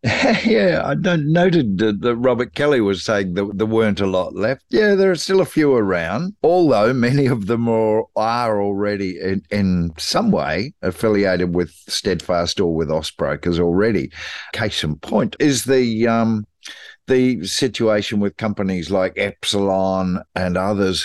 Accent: Australian